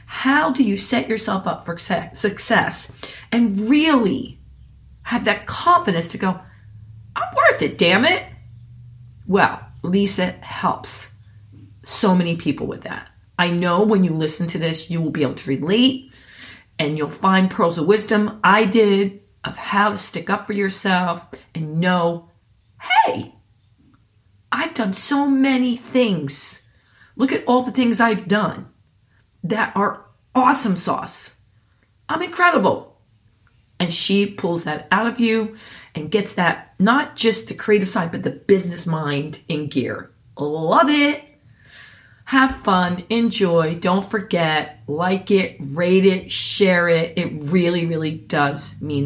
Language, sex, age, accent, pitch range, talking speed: English, female, 40-59, American, 145-215 Hz, 140 wpm